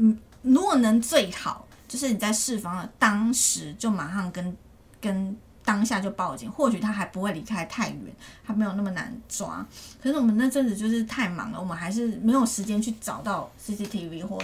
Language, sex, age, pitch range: Chinese, female, 30-49, 185-230 Hz